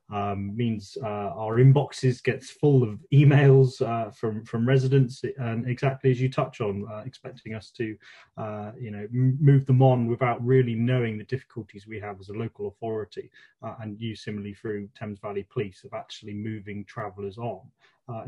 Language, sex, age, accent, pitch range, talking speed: English, male, 20-39, British, 105-130 Hz, 180 wpm